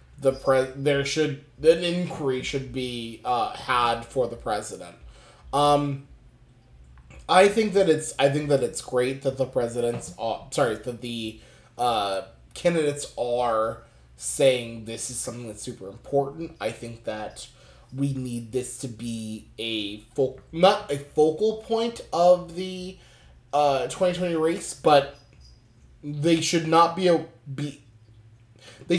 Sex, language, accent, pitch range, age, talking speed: male, English, American, 130-170 Hz, 20-39, 140 wpm